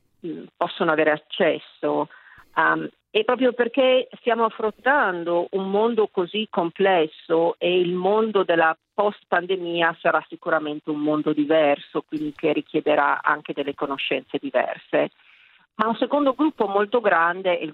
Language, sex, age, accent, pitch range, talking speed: Italian, female, 40-59, native, 160-205 Hz, 130 wpm